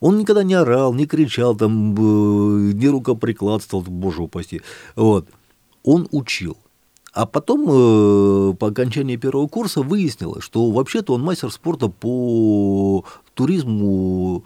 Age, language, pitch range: 50-69, Russian, 100-130 Hz